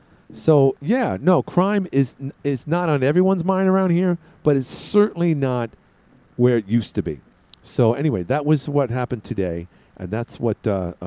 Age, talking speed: 50-69, 180 wpm